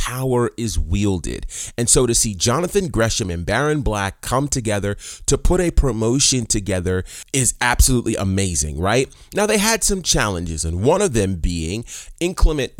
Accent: American